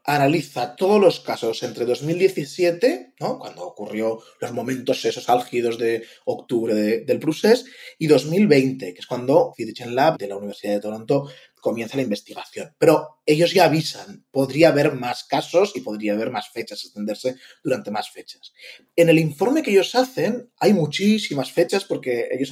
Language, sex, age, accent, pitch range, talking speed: Spanish, male, 20-39, Spanish, 120-165 Hz, 165 wpm